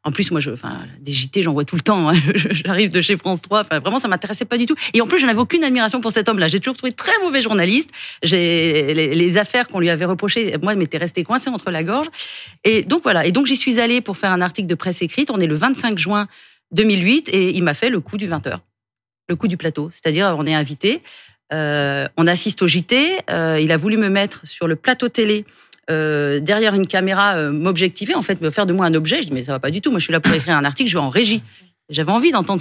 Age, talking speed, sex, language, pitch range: 30-49, 265 wpm, female, French, 160-220 Hz